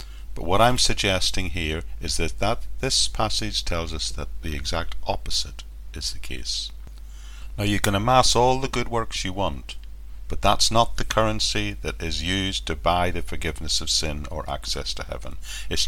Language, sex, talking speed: English, male, 180 wpm